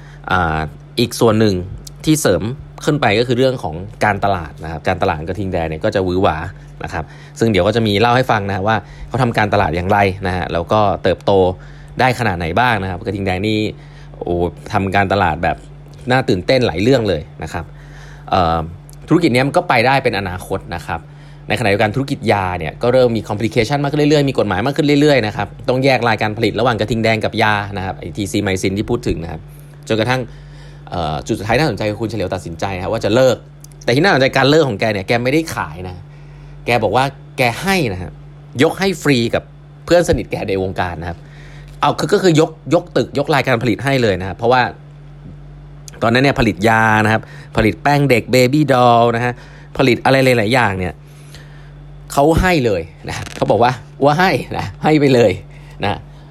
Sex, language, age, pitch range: male, English, 20-39, 100-145 Hz